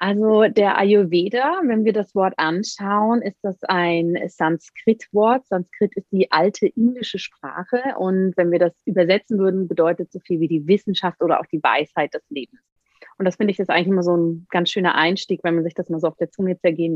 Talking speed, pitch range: 205 wpm, 170-215 Hz